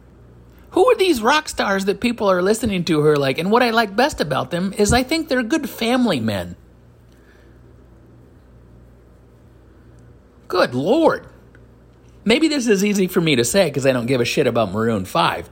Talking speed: 175 wpm